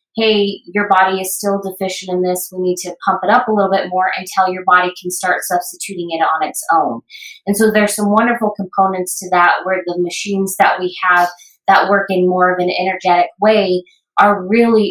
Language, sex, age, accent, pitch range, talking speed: English, female, 20-39, American, 180-200 Hz, 210 wpm